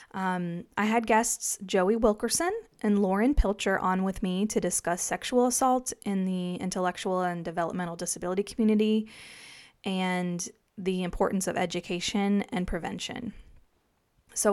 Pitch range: 185-225 Hz